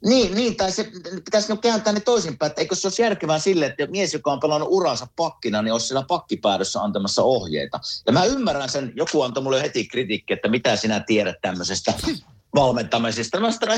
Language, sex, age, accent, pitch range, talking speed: Finnish, male, 50-69, native, 110-175 Hz, 185 wpm